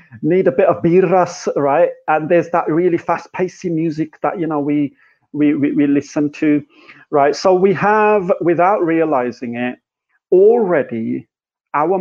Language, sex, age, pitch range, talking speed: Punjabi, male, 40-59, 130-165 Hz, 160 wpm